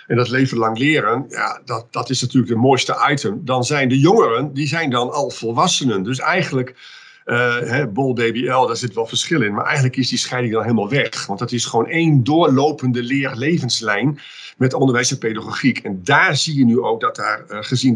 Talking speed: 205 wpm